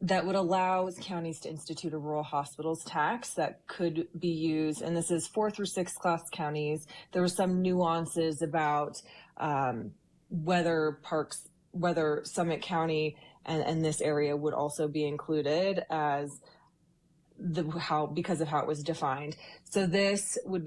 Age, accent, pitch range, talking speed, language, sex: 20-39, American, 150-175 Hz, 155 wpm, English, female